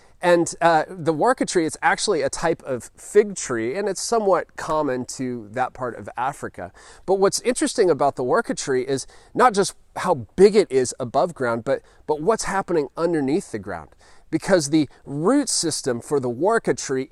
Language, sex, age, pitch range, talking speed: English, male, 30-49, 125-185 Hz, 180 wpm